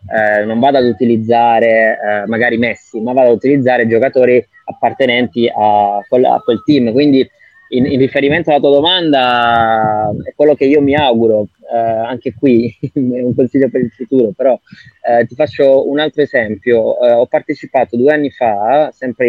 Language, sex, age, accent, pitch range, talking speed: Italian, male, 20-39, native, 120-150 Hz, 170 wpm